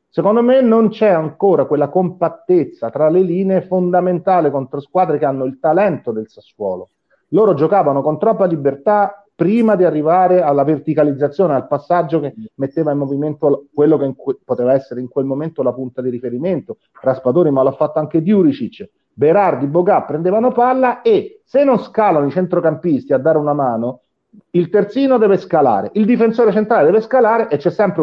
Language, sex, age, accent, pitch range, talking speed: Italian, male, 40-59, native, 145-215 Hz, 165 wpm